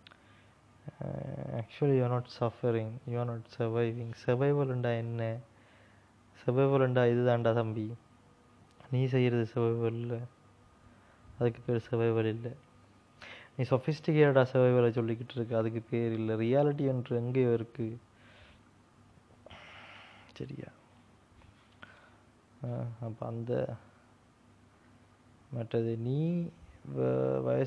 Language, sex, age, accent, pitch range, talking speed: Tamil, male, 20-39, native, 110-125 Hz, 115 wpm